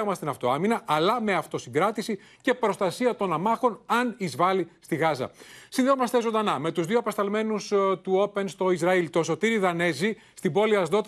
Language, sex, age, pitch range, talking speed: Greek, male, 30-49, 170-220 Hz, 155 wpm